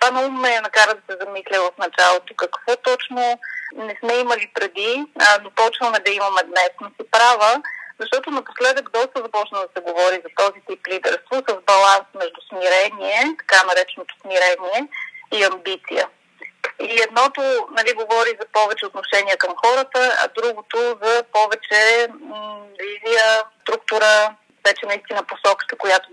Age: 30-49